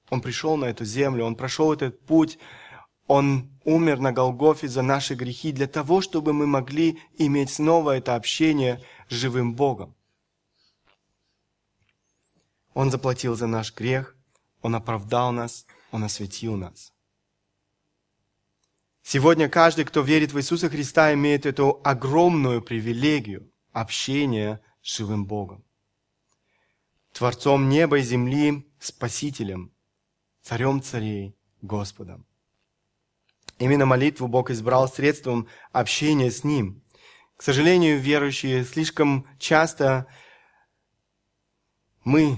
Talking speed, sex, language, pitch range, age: 110 wpm, male, Russian, 115-150 Hz, 20-39